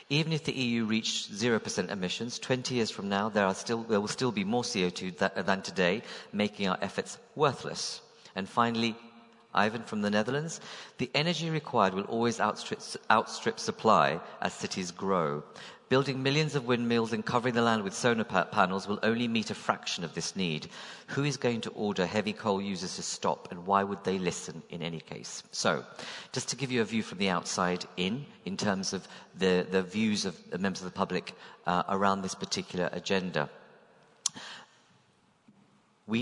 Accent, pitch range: British, 95-125 Hz